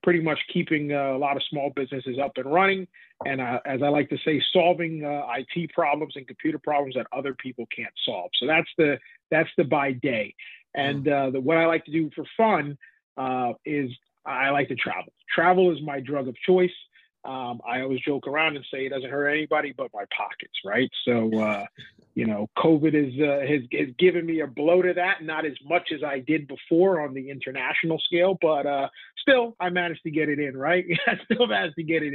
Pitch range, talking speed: 135-175 Hz, 215 wpm